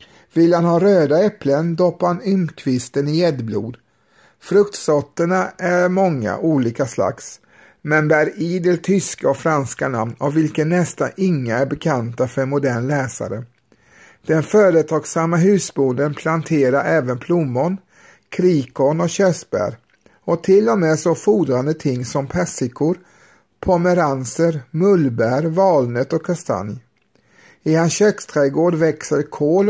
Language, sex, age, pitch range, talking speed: Swedish, male, 50-69, 135-175 Hz, 120 wpm